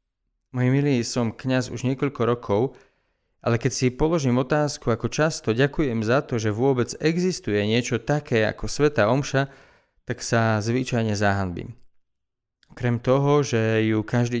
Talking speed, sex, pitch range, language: 140 wpm, male, 105-130 Hz, Slovak